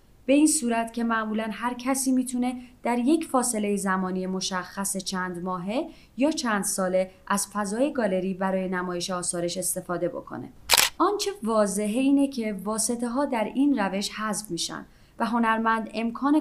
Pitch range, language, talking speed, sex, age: 185-250 Hz, Persian, 145 wpm, female, 30-49